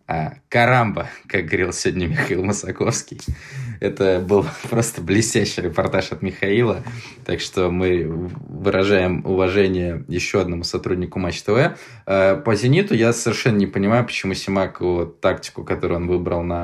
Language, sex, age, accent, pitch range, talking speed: Russian, male, 20-39, native, 85-100 Hz, 135 wpm